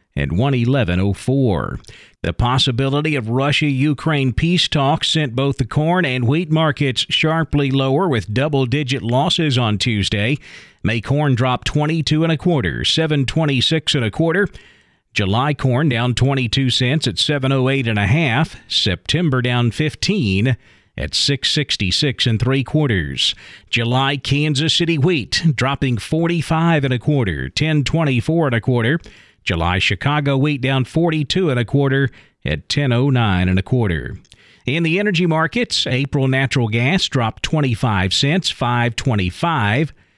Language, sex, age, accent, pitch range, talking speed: English, male, 40-59, American, 120-155 Hz, 135 wpm